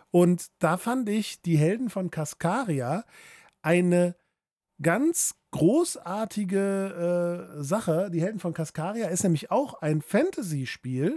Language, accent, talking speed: German, German, 120 wpm